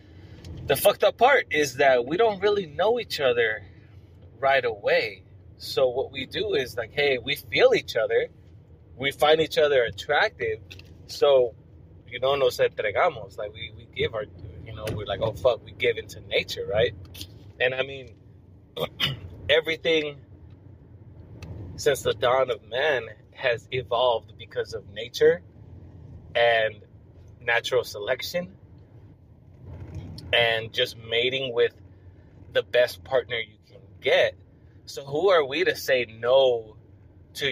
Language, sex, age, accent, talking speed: English, male, 20-39, American, 140 wpm